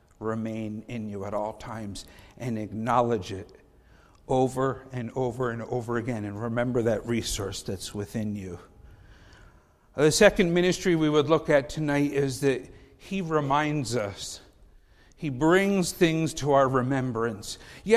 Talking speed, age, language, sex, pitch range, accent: 140 wpm, 50-69, English, male, 130-180 Hz, American